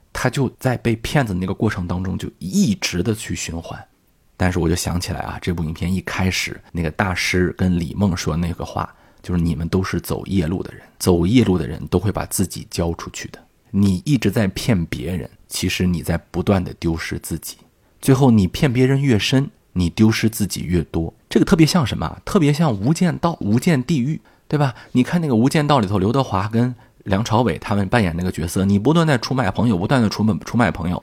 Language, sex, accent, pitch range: Chinese, male, native, 90-130 Hz